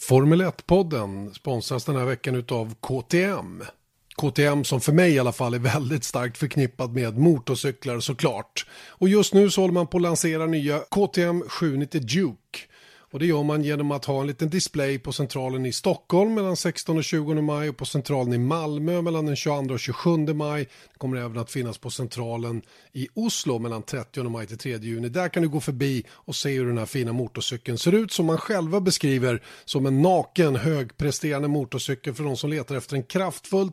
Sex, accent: male, native